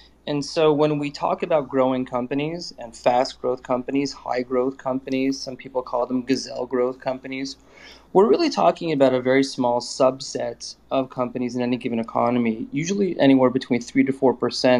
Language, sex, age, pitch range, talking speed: English, male, 30-49, 120-135 Hz, 160 wpm